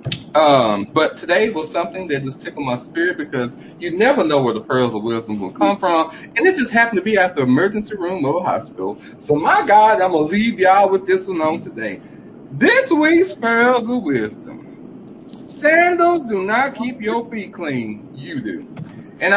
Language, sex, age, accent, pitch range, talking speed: English, male, 40-59, American, 145-230 Hz, 195 wpm